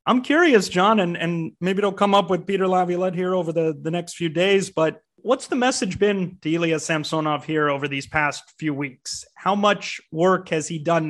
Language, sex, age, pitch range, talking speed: English, male, 30-49, 165-200 Hz, 210 wpm